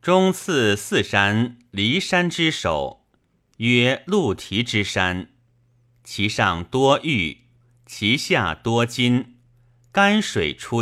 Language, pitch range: Chinese, 105-130 Hz